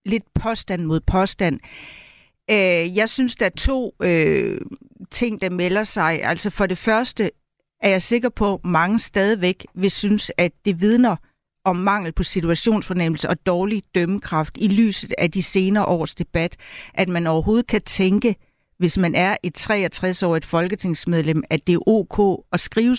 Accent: native